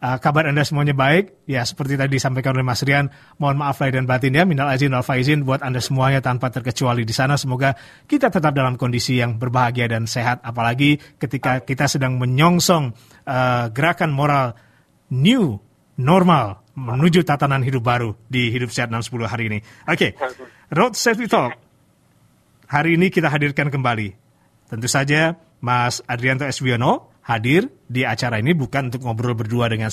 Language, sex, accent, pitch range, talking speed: Indonesian, male, native, 120-145 Hz, 160 wpm